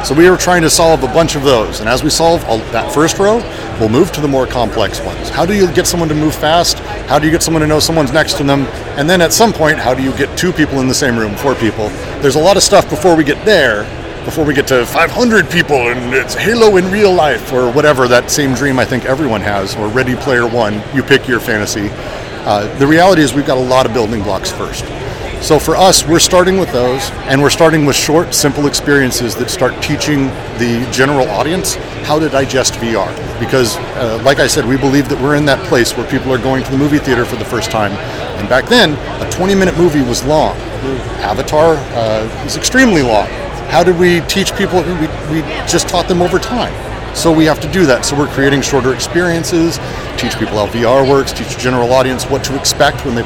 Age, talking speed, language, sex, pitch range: 40-59, 235 wpm, English, male, 120-155 Hz